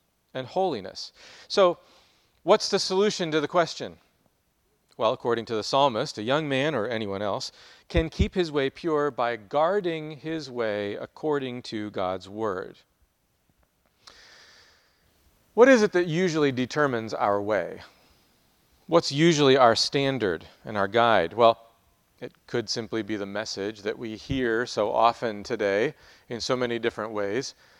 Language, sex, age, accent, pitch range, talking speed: English, male, 40-59, American, 110-150 Hz, 140 wpm